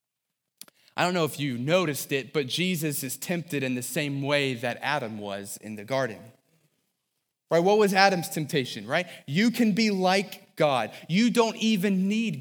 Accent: American